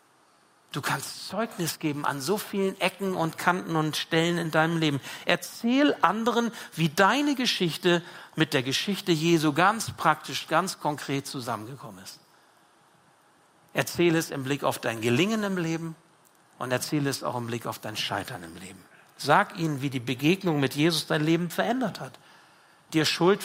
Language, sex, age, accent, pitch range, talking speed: German, male, 60-79, German, 140-175 Hz, 160 wpm